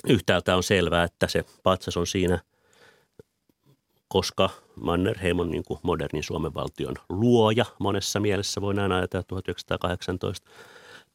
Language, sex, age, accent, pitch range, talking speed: Finnish, male, 30-49, native, 90-105 Hz, 115 wpm